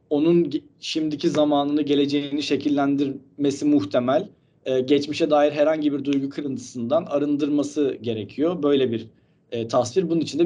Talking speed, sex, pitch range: 120 wpm, male, 130-165 Hz